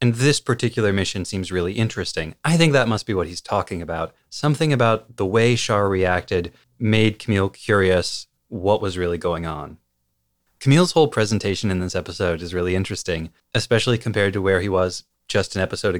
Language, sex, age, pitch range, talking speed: English, male, 30-49, 95-120 Hz, 180 wpm